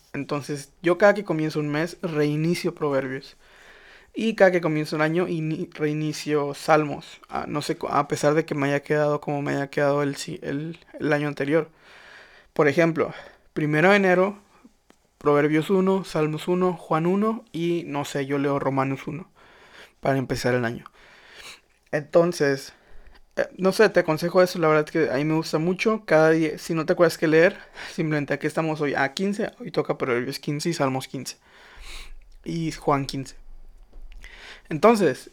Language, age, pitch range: Spanish, 20-39, 145-170 Hz